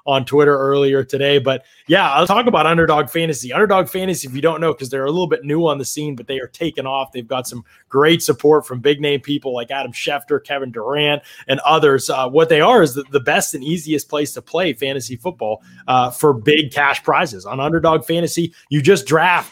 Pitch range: 135-165 Hz